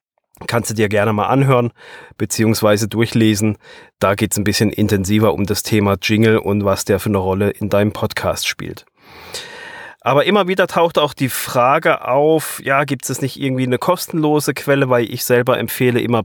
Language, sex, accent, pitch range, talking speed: German, male, German, 115-140 Hz, 180 wpm